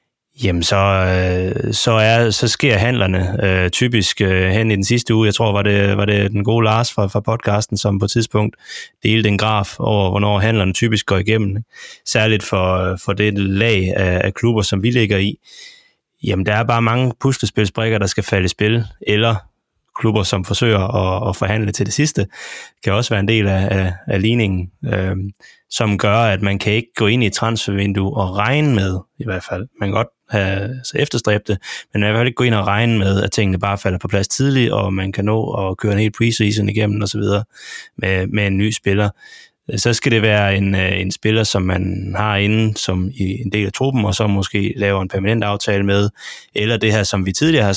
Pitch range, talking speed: 100-110 Hz, 215 wpm